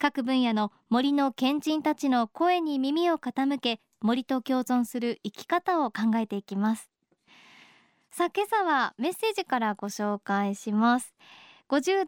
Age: 20-39